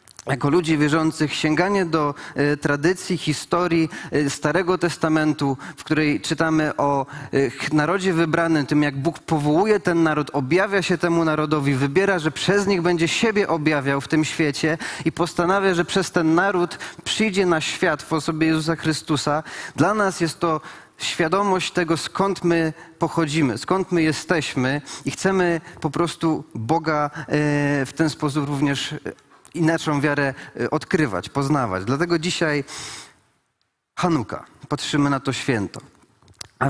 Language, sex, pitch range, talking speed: Polish, male, 130-165 Hz, 140 wpm